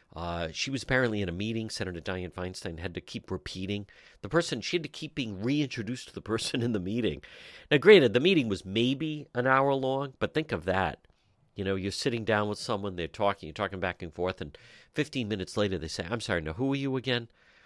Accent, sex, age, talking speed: American, male, 50-69, 230 wpm